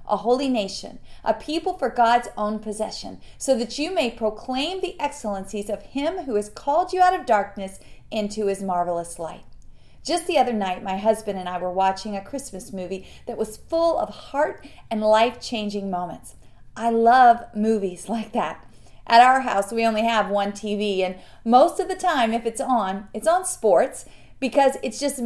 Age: 40-59